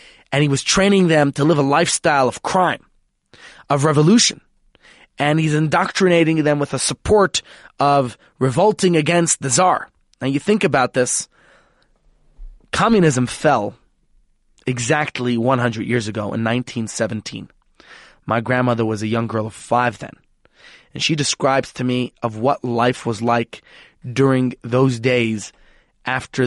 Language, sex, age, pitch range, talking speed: English, male, 20-39, 115-150 Hz, 140 wpm